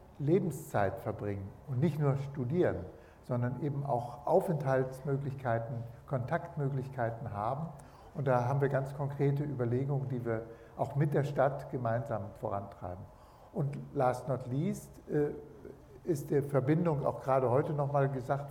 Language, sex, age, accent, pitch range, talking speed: German, male, 60-79, German, 130-150 Hz, 125 wpm